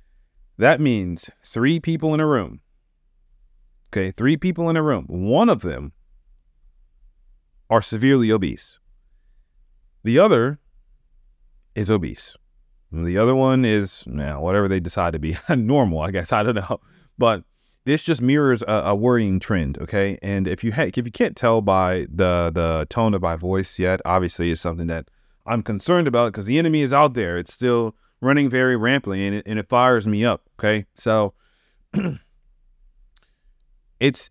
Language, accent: English, American